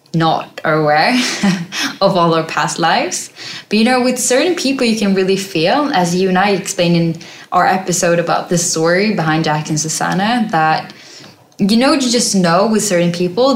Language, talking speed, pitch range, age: English, 180 wpm, 165-205 Hz, 10-29